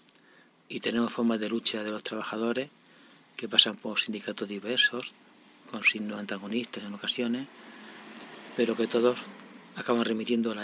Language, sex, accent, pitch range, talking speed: Spanish, male, Spanish, 105-120 Hz, 140 wpm